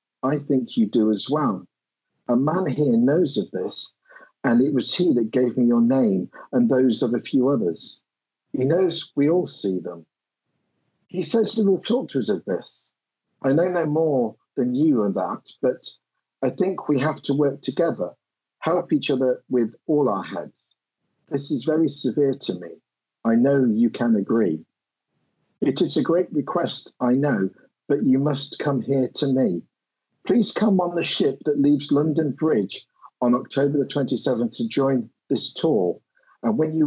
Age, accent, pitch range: 50-69, British, 120-160 Hz